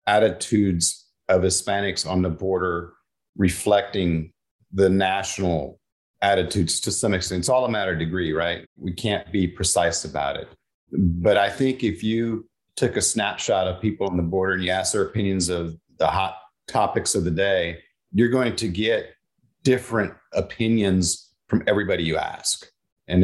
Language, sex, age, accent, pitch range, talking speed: English, male, 40-59, American, 90-105 Hz, 160 wpm